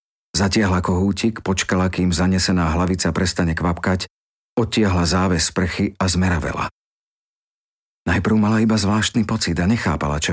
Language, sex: Slovak, male